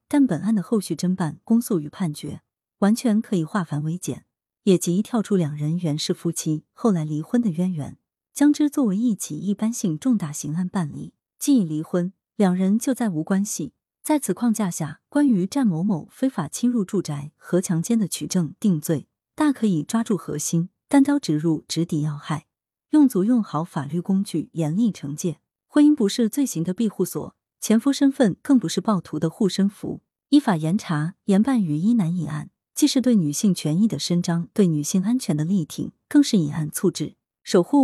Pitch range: 160-225 Hz